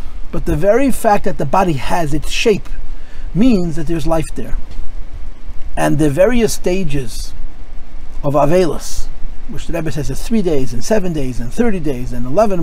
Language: English